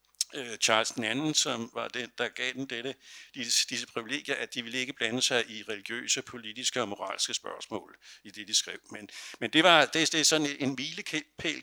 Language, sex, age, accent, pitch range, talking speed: Danish, male, 60-79, native, 115-145 Hz, 200 wpm